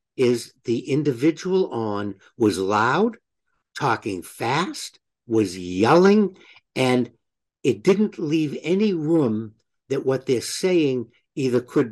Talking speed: 110 wpm